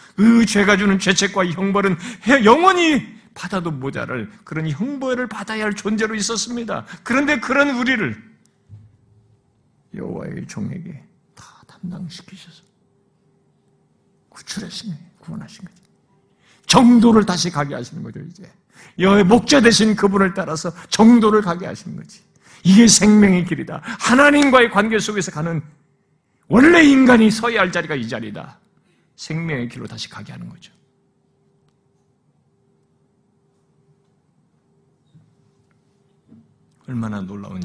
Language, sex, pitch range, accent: Korean, male, 130-220 Hz, native